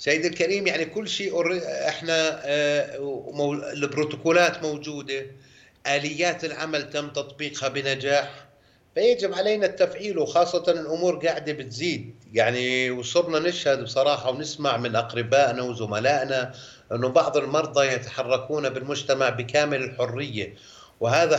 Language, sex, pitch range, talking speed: Arabic, male, 125-150 Hz, 100 wpm